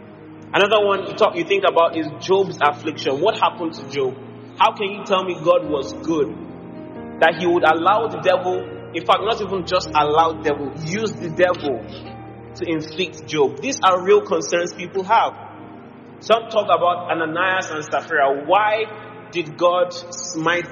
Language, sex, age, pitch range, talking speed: English, male, 30-49, 160-220 Hz, 165 wpm